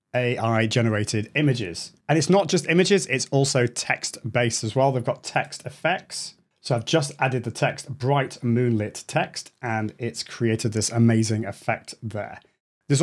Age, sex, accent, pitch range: 30-49, male, British, 115-150 Hz